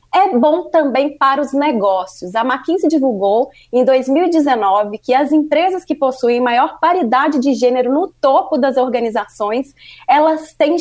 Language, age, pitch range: Portuguese, 20-39, 250-320 Hz